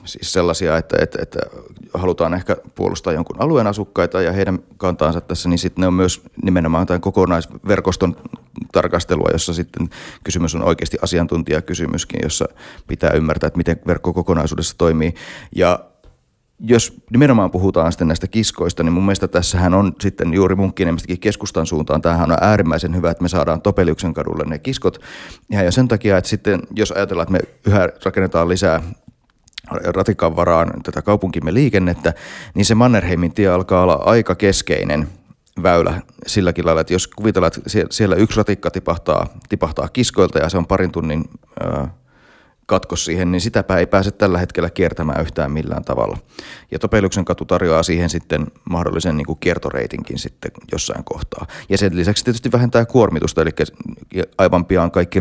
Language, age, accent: Finnish, 30-49, native